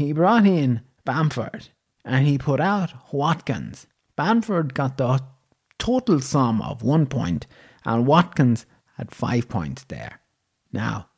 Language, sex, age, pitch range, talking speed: English, male, 30-49, 110-155 Hz, 130 wpm